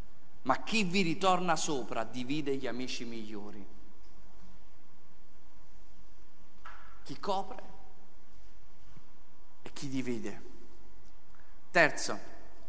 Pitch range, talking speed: 115-180 Hz, 70 wpm